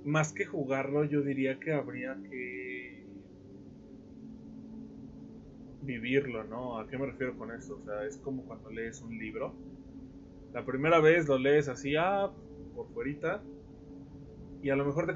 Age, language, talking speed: 20-39, Spanish, 150 wpm